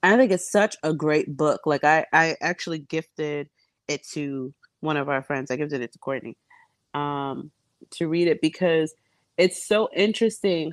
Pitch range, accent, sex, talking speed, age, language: 140-180 Hz, American, female, 175 wpm, 30-49, English